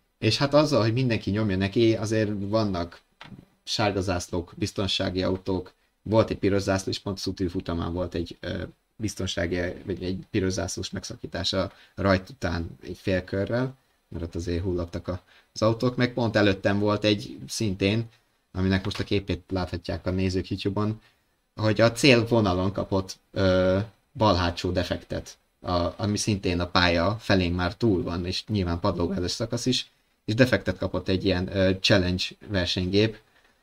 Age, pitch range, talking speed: 20-39, 90-110 Hz, 150 wpm